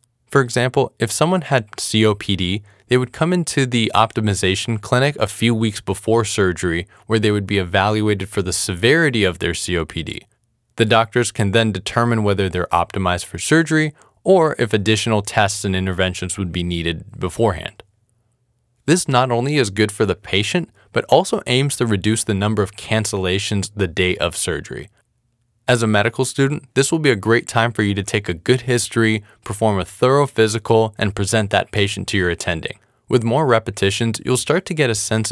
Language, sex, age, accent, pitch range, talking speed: English, male, 20-39, American, 100-120 Hz, 180 wpm